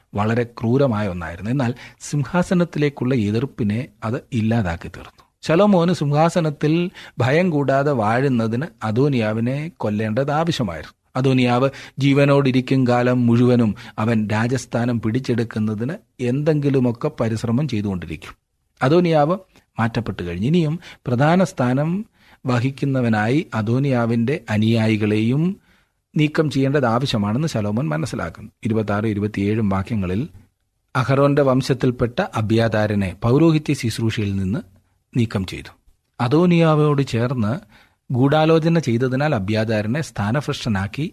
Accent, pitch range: native, 105-140 Hz